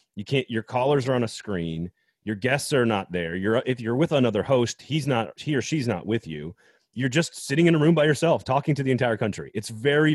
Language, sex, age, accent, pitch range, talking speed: English, male, 30-49, American, 100-130 Hz, 250 wpm